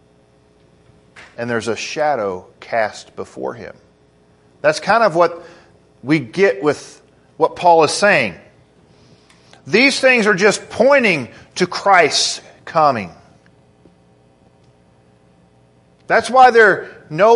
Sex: male